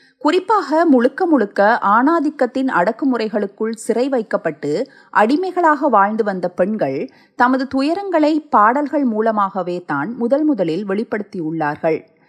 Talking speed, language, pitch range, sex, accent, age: 95 wpm, Tamil, 190-270 Hz, female, native, 30-49